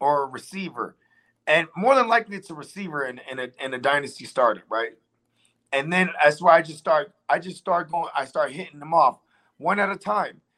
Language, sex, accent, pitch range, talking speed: English, male, American, 150-215 Hz, 215 wpm